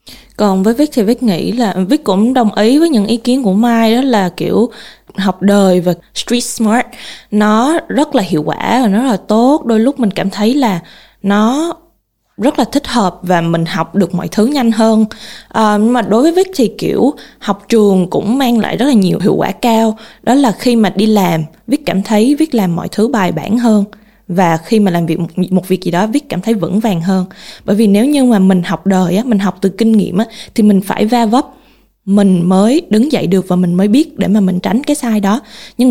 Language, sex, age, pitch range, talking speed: Vietnamese, female, 20-39, 190-240 Hz, 235 wpm